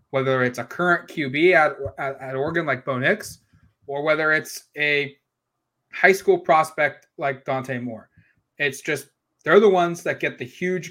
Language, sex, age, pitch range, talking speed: English, male, 20-39, 140-180 Hz, 170 wpm